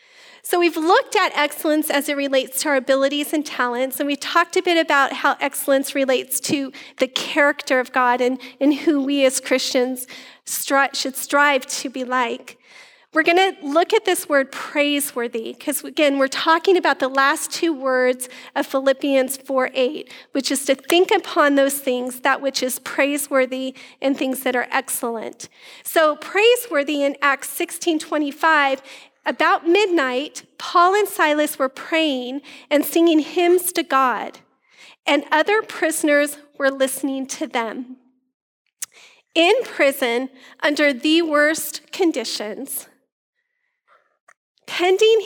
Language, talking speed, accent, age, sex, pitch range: English, 140 wpm, American, 40-59, female, 265-325 Hz